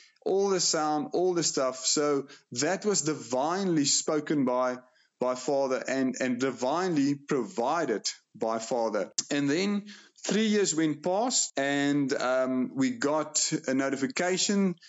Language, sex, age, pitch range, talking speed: English, male, 30-49, 140-185 Hz, 130 wpm